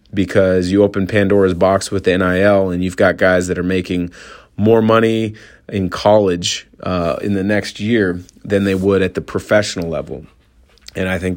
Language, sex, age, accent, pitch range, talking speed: English, male, 30-49, American, 90-100 Hz, 180 wpm